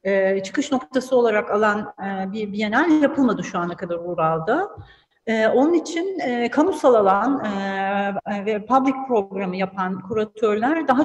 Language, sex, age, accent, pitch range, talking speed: Turkish, female, 40-59, native, 200-275 Hz, 140 wpm